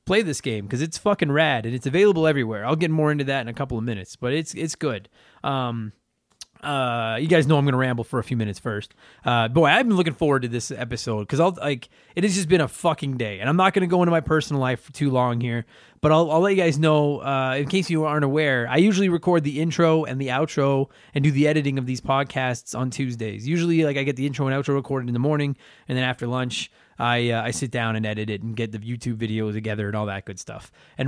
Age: 20-39